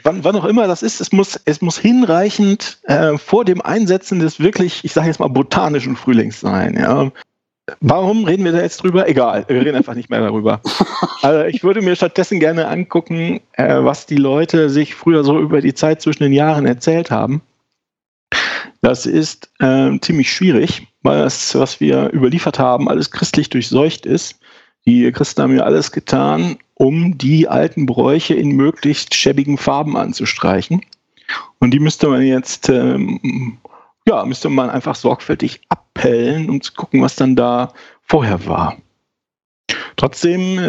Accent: German